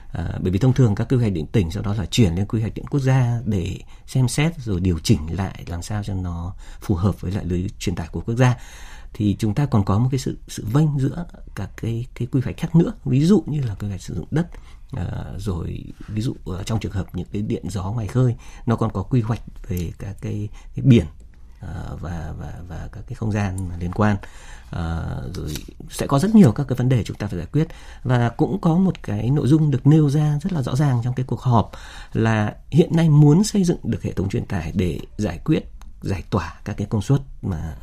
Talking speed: 240 wpm